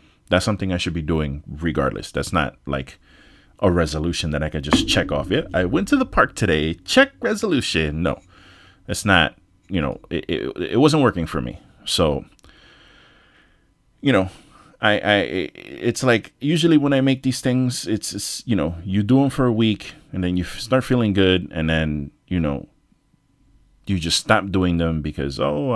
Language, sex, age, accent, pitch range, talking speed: English, male, 30-49, American, 80-105 Hz, 185 wpm